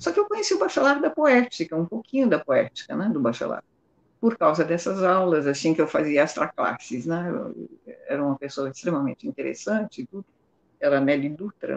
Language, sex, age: English, female, 60-79